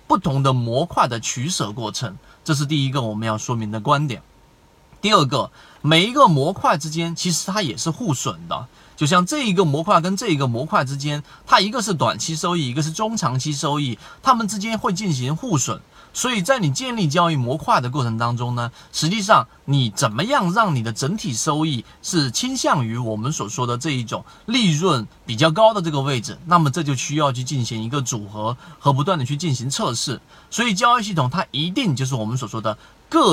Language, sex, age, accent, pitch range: Chinese, male, 30-49, native, 130-180 Hz